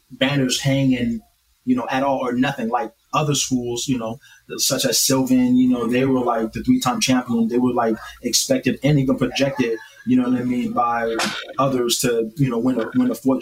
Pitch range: 125-145 Hz